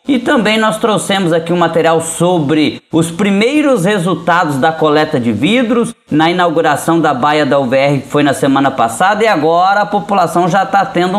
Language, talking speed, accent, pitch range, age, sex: Portuguese, 175 wpm, Brazilian, 160-195 Hz, 20-39, male